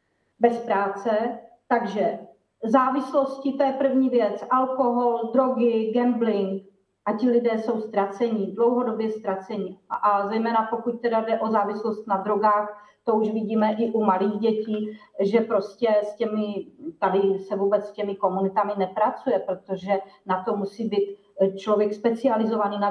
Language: English